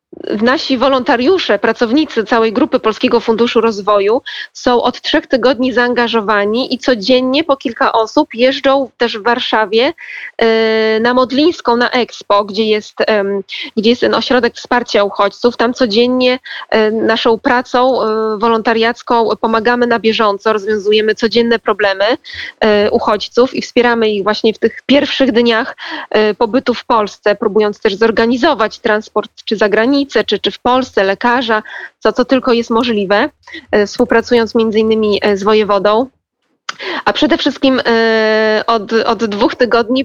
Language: Polish